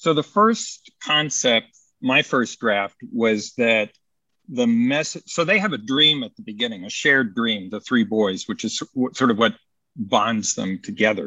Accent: American